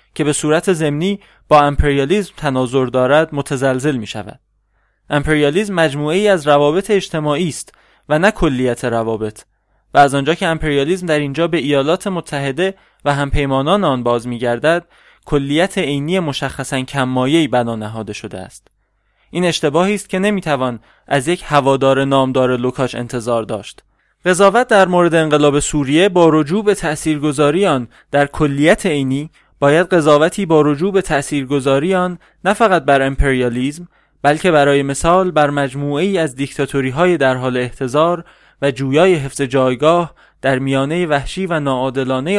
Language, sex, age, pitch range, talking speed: English, male, 20-39, 135-170 Hz, 150 wpm